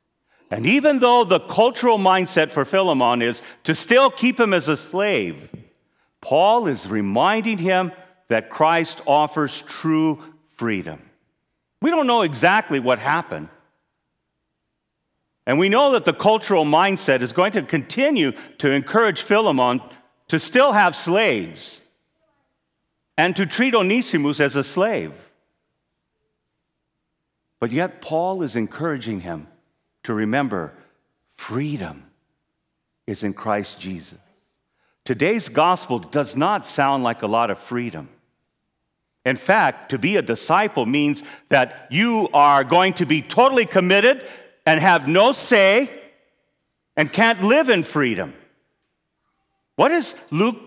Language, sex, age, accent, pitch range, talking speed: English, male, 50-69, American, 140-225 Hz, 125 wpm